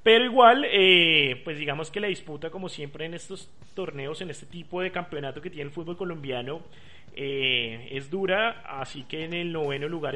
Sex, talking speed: male, 190 wpm